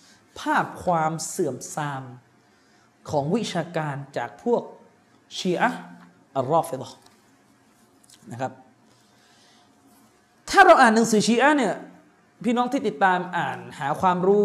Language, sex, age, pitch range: Thai, male, 20-39, 160-225 Hz